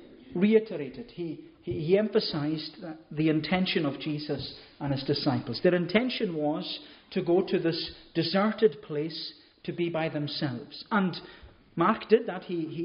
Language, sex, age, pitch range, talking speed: English, male, 40-59, 150-200 Hz, 145 wpm